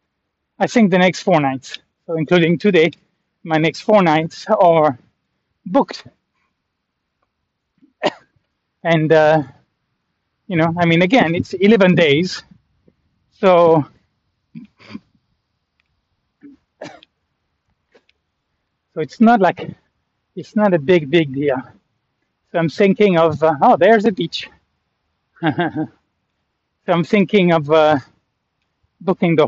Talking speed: 105 wpm